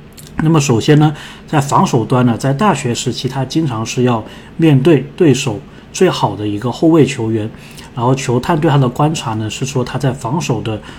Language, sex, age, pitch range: Chinese, male, 20-39, 115-150 Hz